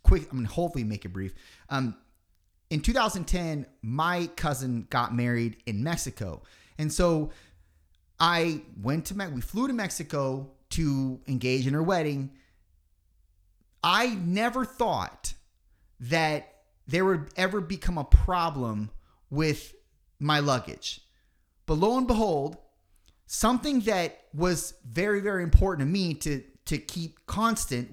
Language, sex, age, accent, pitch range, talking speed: English, male, 30-49, American, 130-180 Hz, 130 wpm